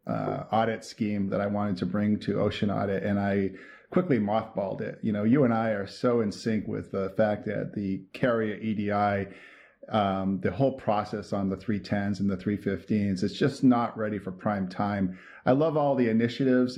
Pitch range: 105-120 Hz